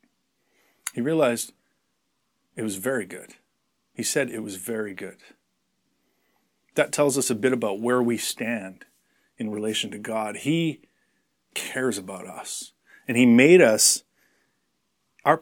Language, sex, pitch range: English, male, 120-160 Hz